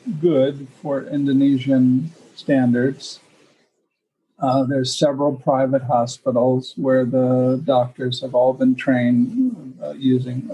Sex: male